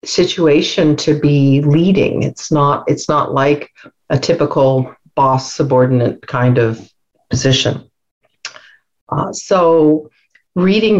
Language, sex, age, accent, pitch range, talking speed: English, female, 50-69, American, 135-155 Hz, 105 wpm